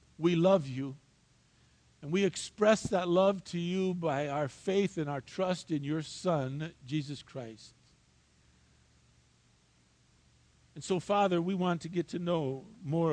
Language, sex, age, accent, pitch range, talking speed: English, male, 50-69, American, 135-185 Hz, 140 wpm